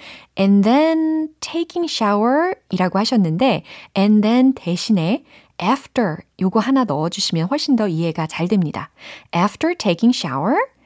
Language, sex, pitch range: Korean, female, 165-245 Hz